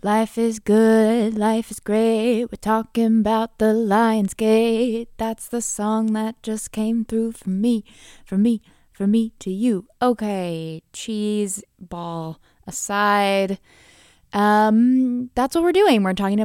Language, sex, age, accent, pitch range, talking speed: English, female, 20-39, American, 170-225 Hz, 135 wpm